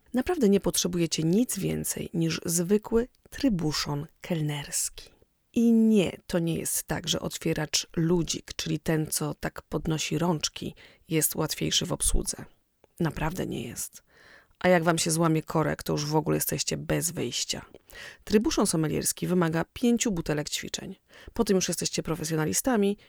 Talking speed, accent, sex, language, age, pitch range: 145 wpm, native, female, Polish, 30-49, 155-215 Hz